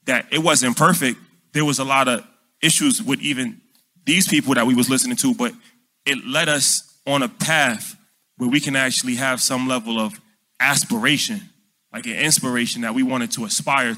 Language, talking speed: English, 185 wpm